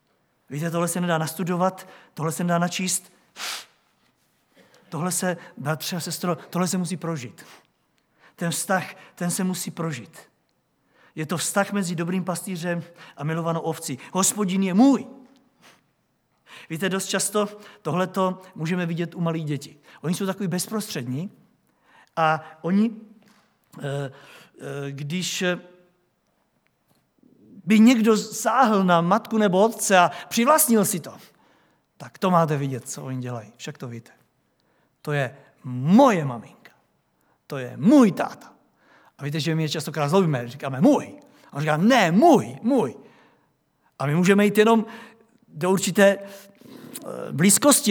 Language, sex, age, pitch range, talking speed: Czech, male, 50-69, 160-210 Hz, 130 wpm